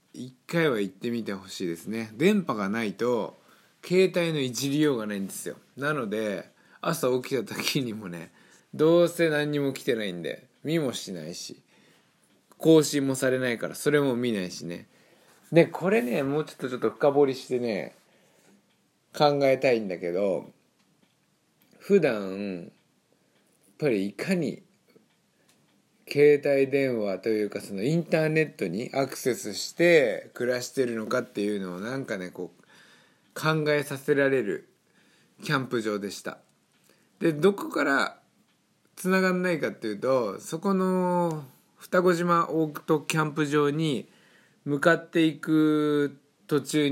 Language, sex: Japanese, male